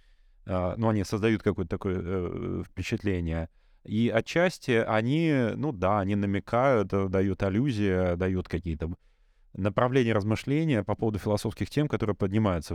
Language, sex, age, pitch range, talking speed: Russian, male, 20-39, 90-110 Hz, 130 wpm